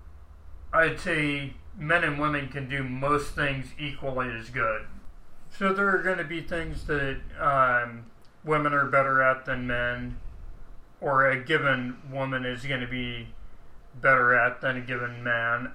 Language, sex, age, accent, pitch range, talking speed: English, male, 30-49, American, 120-145 Hz, 150 wpm